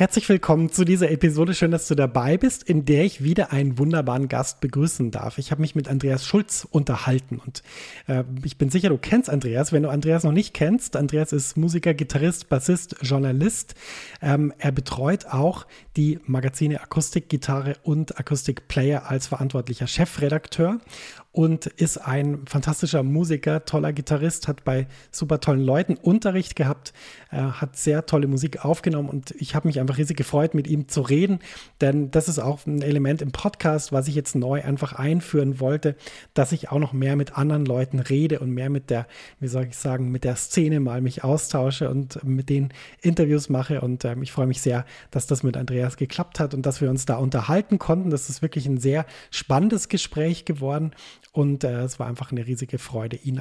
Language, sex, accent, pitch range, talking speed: German, male, German, 135-160 Hz, 190 wpm